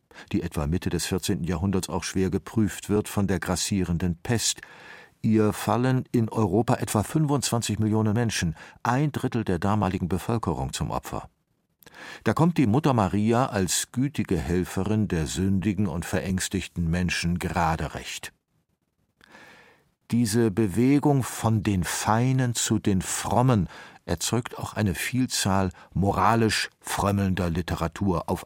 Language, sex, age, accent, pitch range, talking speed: German, male, 50-69, German, 90-115 Hz, 125 wpm